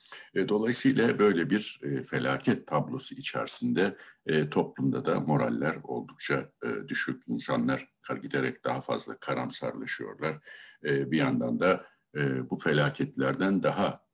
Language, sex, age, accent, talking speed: Turkish, male, 60-79, native, 95 wpm